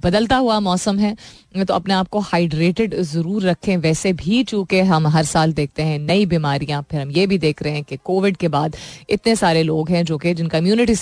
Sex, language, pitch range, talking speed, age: female, Hindi, 155-215 Hz, 220 wpm, 30-49